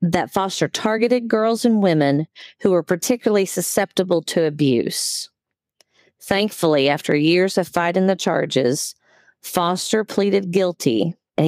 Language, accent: English, American